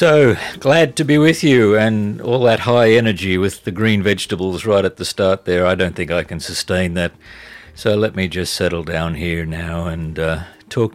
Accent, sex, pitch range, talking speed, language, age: Australian, male, 95-110 Hz, 210 wpm, English, 50-69